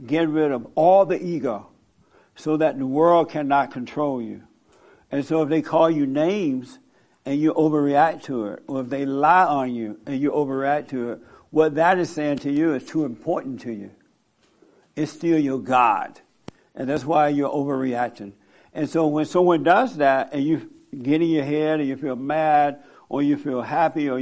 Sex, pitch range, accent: male, 135-165 Hz, American